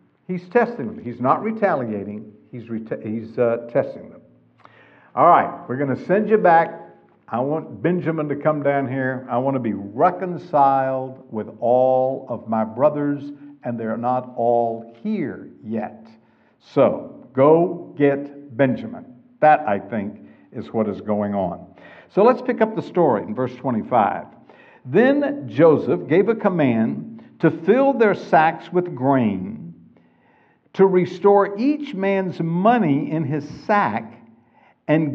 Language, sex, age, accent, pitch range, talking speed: English, male, 60-79, American, 115-190 Hz, 140 wpm